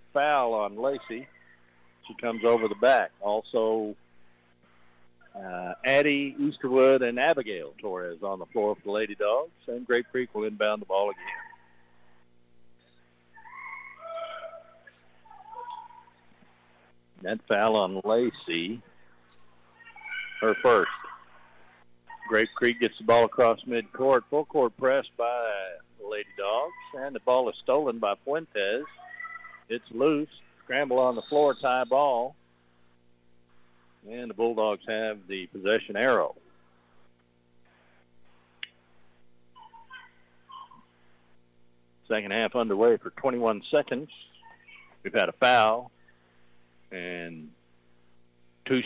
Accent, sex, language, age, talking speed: American, male, English, 50-69, 100 wpm